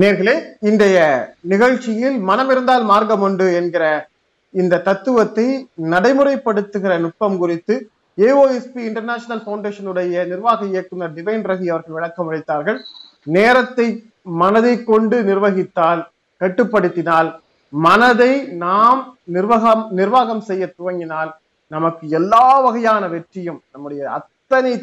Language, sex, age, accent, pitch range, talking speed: Tamil, male, 30-49, native, 170-225 Hz, 95 wpm